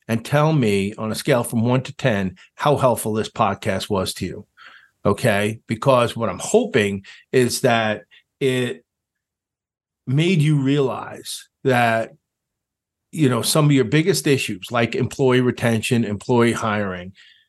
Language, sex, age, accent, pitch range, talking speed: English, male, 40-59, American, 110-135 Hz, 140 wpm